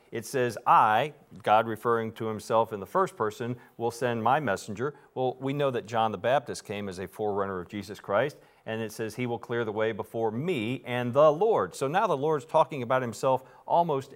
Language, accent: English, American